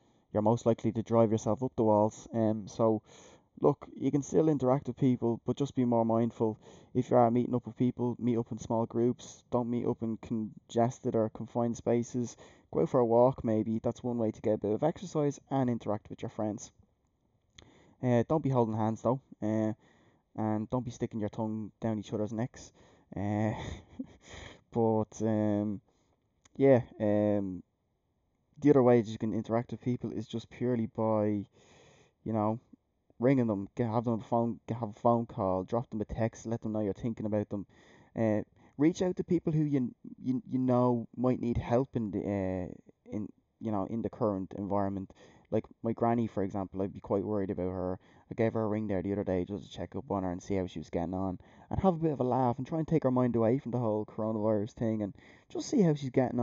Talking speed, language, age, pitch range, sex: 215 wpm, English, 10-29, 105-125 Hz, male